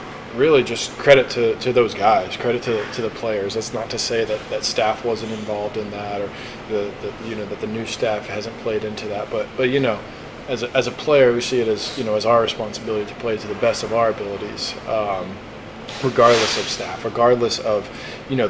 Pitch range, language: 105-120 Hz, English